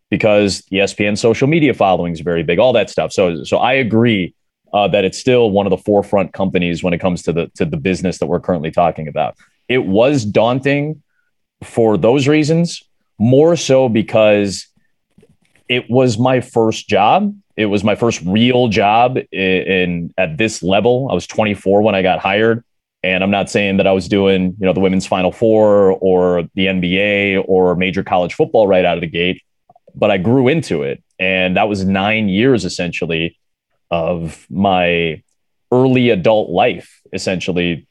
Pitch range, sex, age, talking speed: 90-115 Hz, male, 30-49, 175 wpm